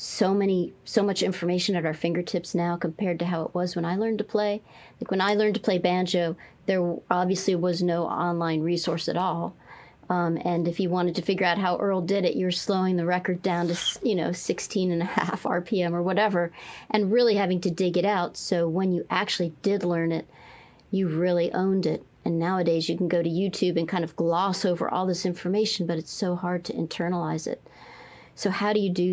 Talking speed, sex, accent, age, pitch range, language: 220 wpm, female, American, 40-59, 170-190 Hz, English